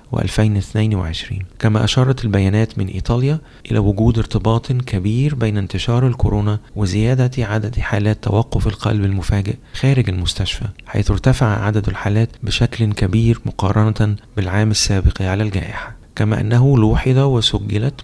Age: 30-49